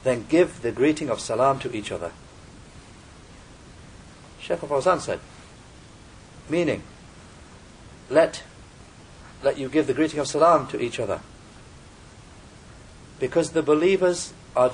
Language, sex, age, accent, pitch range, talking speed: English, male, 50-69, British, 120-160 Hz, 120 wpm